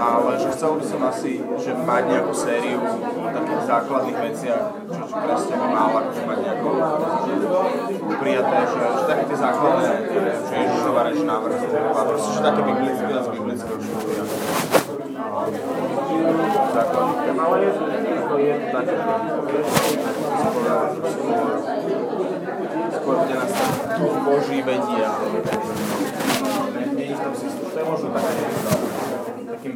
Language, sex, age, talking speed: Slovak, male, 20-39, 120 wpm